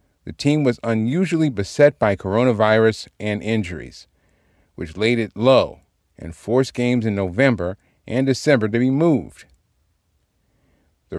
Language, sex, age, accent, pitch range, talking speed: English, male, 40-59, American, 95-130 Hz, 130 wpm